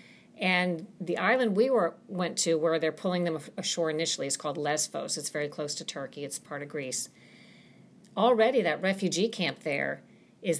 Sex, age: female, 50-69